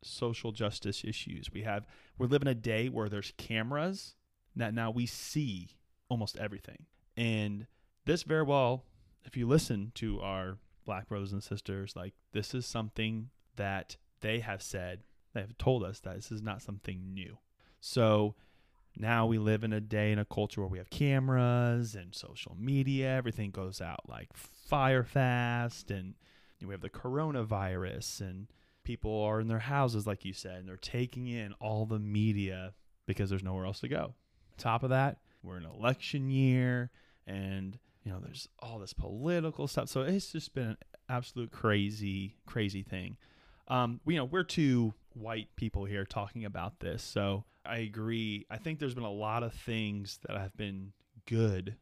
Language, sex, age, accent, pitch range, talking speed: English, male, 20-39, American, 95-120 Hz, 175 wpm